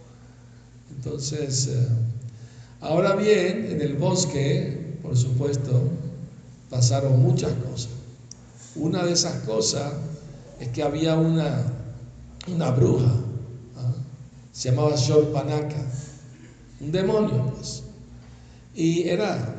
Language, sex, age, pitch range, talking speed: Spanish, male, 60-79, 125-150 Hz, 90 wpm